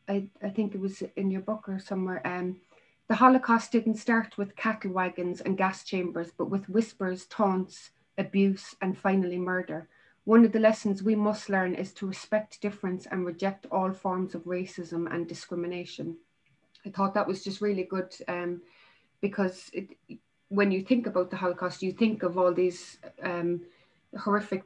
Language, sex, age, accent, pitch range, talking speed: English, female, 30-49, Irish, 180-210 Hz, 170 wpm